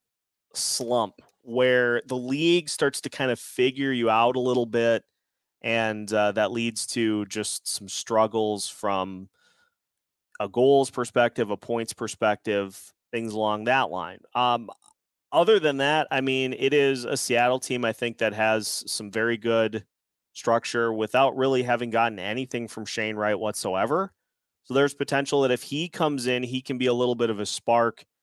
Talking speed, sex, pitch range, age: 165 wpm, male, 110-135 Hz, 30-49